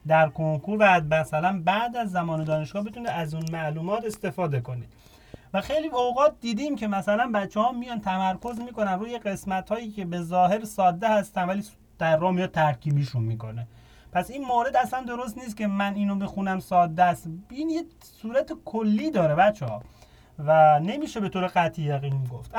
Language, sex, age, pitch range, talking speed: Persian, male, 30-49, 175-225 Hz, 170 wpm